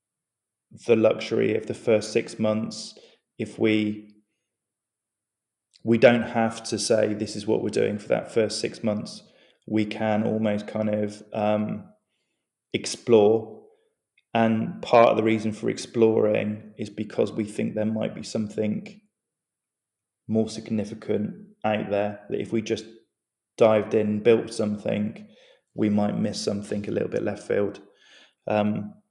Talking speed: 140 wpm